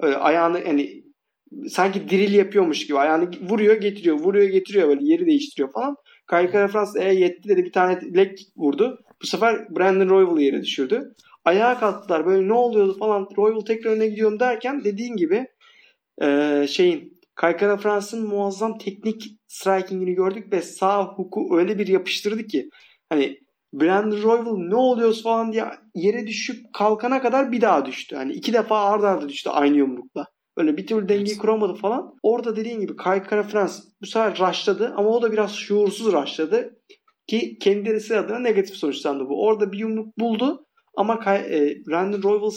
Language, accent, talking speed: Turkish, native, 160 wpm